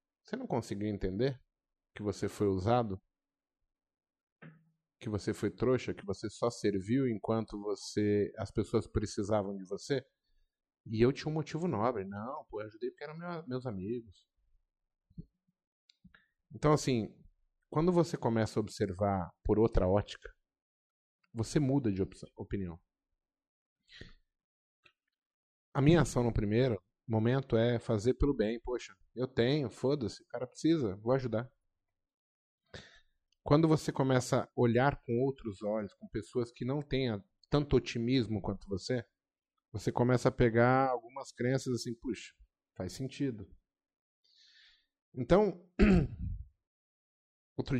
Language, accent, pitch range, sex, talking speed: Portuguese, Brazilian, 105-135 Hz, male, 125 wpm